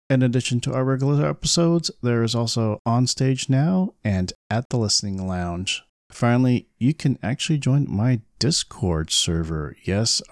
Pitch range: 105-135 Hz